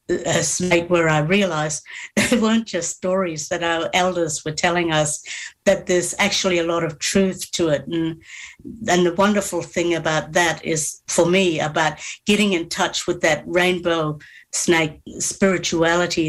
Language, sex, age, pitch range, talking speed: English, female, 60-79, 165-190 Hz, 160 wpm